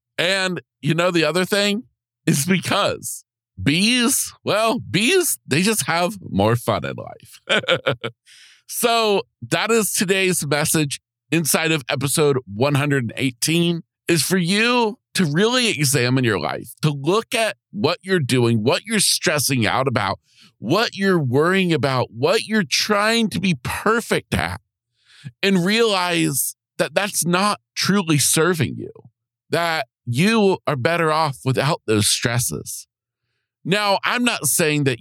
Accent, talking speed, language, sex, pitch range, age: American, 130 wpm, English, male, 120-185 Hz, 50-69